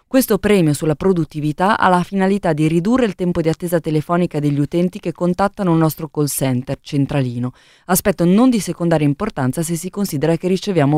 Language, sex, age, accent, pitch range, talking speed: Italian, female, 20-39, native, 150-195 Hz, 180 wpm